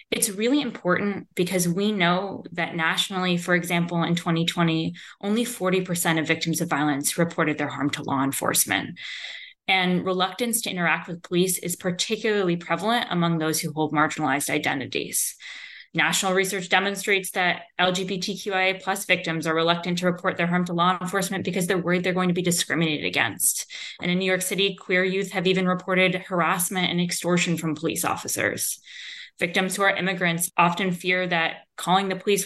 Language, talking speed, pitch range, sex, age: English, 165 wpm, 170-195 Hz, female, 20-39